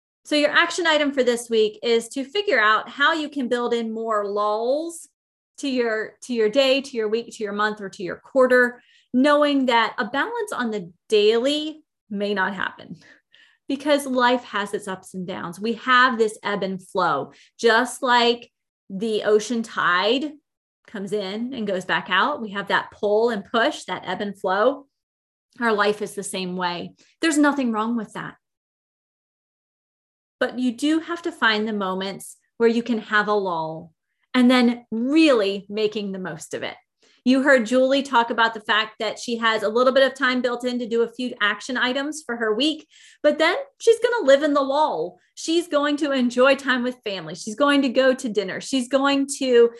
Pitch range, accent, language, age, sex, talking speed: 210-275 Hz, American, English, 30-49, female, 195 wpm